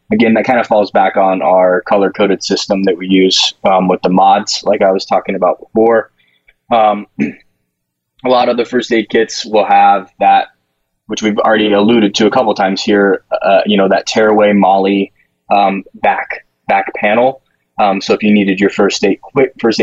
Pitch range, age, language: 95-105 Hz, 20-39, English